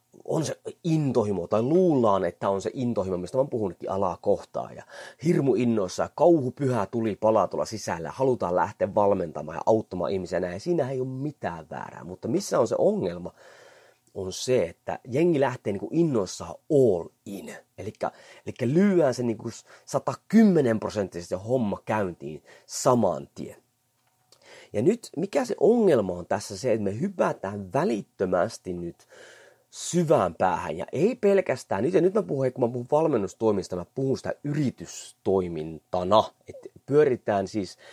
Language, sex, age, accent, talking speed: Finnish, male, 30-49, native, 145 wpm